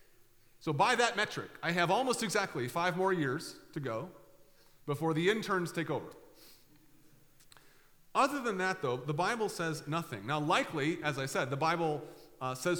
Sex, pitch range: male, 130-175 Hz